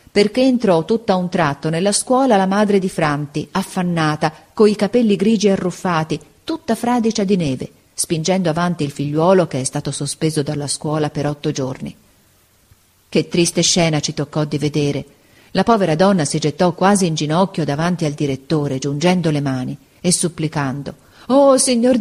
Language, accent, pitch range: Italian, native, 165-230 Hz